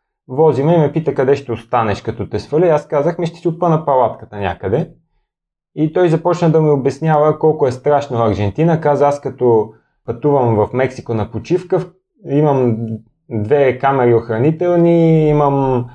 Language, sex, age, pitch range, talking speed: Bulgarian, male, 20-39, 120-155 Hz, 155 wpm